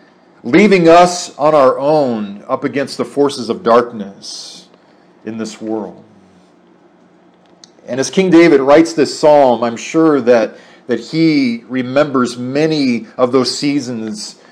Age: 40-59